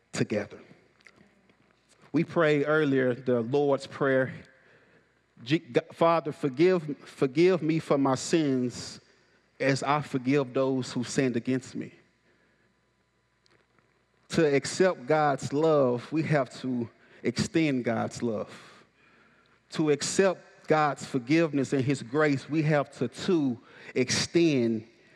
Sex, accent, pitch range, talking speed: male, American, 130-160 Hz, 105 wpm